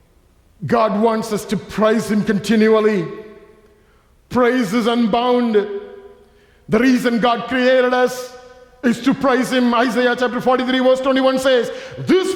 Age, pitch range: 50-69, 220-300 Hz